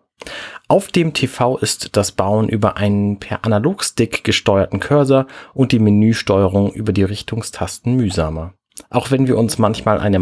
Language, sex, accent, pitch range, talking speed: German, male, German, 100-130 Hz, 145 wpm